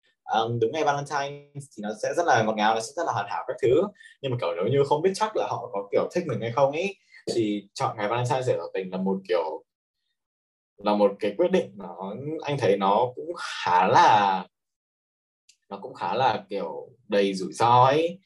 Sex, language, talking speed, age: male, Vietnamese, 220 wpm, 20-39